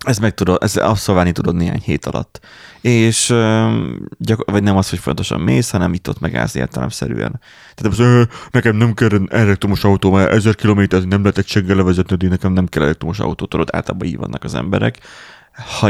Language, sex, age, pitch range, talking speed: Hungarian, male, 30-49, 90-105 Hz, 185 wpm